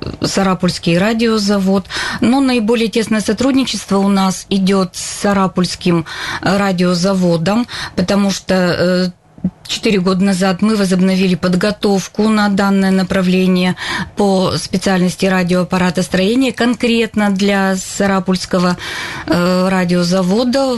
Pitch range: 180-210 Hz